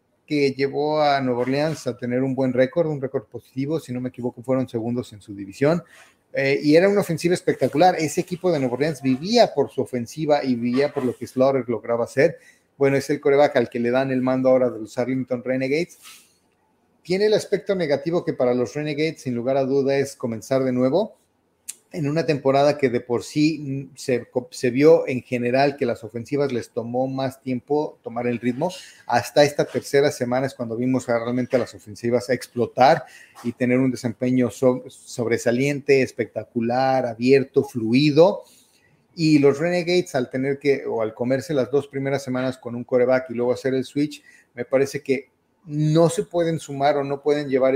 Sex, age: male, 40-59